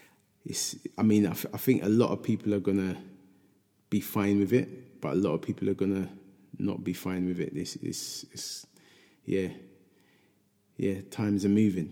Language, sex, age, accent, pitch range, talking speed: English, male, 20-39, British, 90-105 Hz, 195 wpm